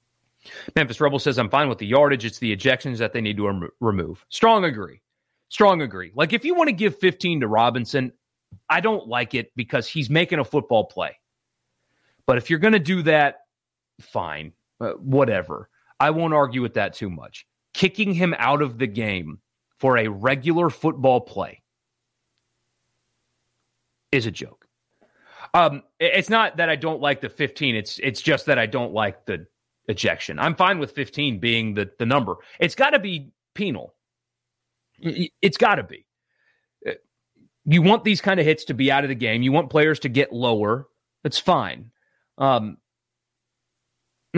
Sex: male